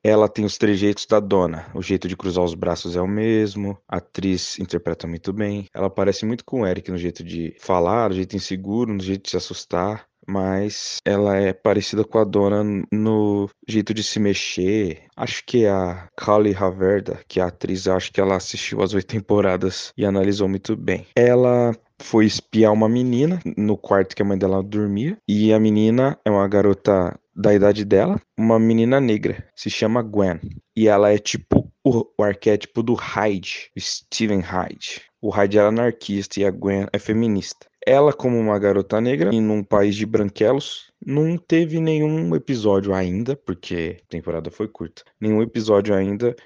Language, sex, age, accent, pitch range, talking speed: Portuguese, male, 20-39, Brazilian, 95-110 Hz, 180 wpm